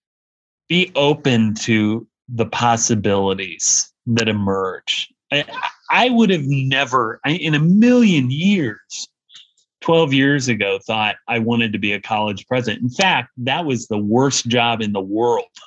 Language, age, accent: English, 30-49, American